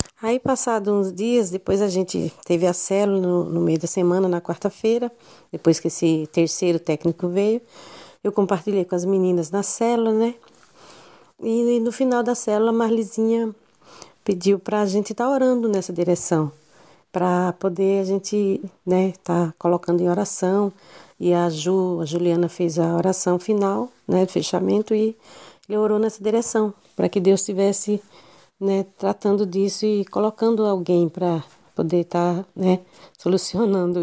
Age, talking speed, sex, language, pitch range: 40-59, 160 wpm, female, Portuguese, 175-215 Hz